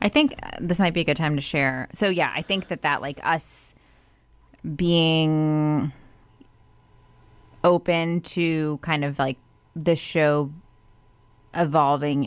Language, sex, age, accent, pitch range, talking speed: English, female, 20-39, American, 140-165 Hz, 130 wpm